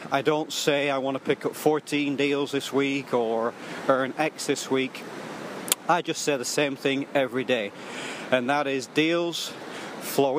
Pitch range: 130-155 Hz